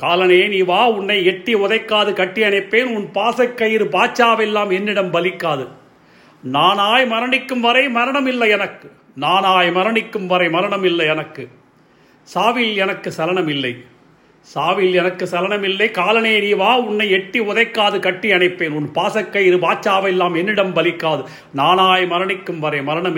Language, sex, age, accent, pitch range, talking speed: Tamil, male, 40-59, native, 170-220 Hz, 125 wpm